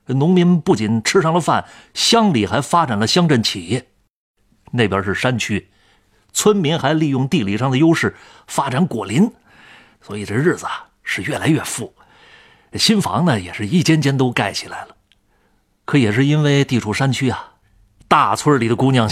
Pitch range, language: 115-175 Hz, Chinese